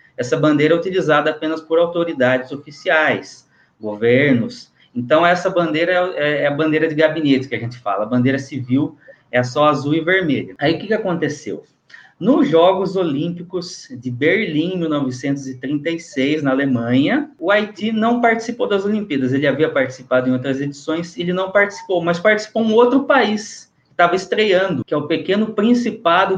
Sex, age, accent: male, 20-39, Brazilian